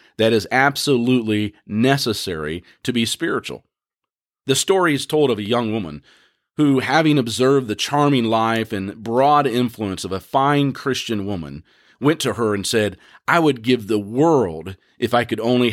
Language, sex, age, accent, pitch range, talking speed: English, male, 40-59, American, 105-130 Hz, 165 wpm